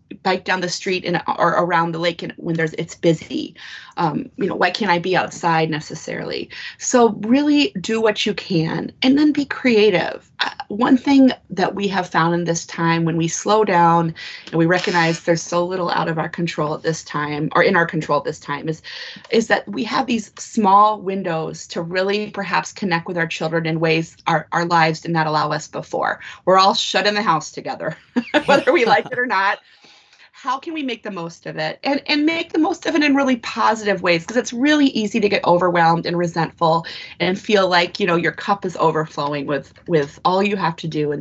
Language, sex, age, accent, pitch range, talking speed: English, female, 20-39, American, 165-225 Hz, 220 wpm